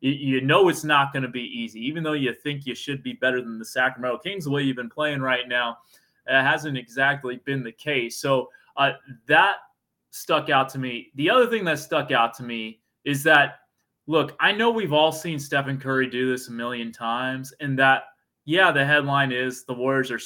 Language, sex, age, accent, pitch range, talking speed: English, male, 20-39, American, 130-180 Hz, 215 wpm